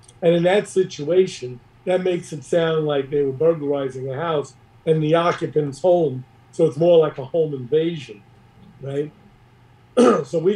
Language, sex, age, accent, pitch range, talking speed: English, male, 50-69, American, 130-170 Hz, 160 wpm